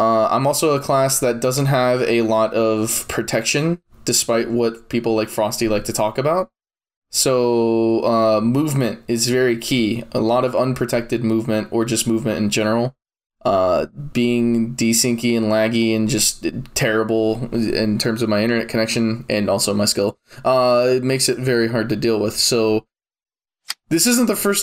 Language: English